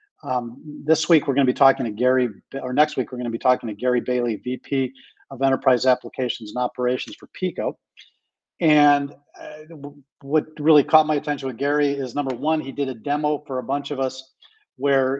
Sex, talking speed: male, 195 wpm